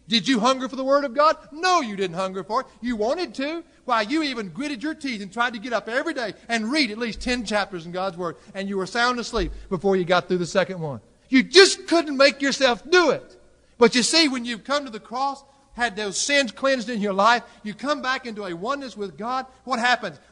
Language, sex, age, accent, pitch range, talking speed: English, male, 50-69, American, 170-245 Hz, 250 wpm